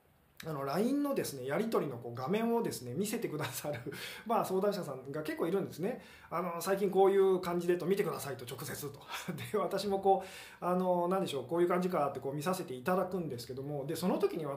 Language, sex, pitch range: Japanese, male, 130-195 Hz